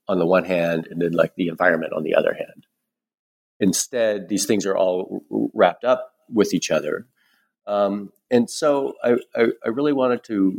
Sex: male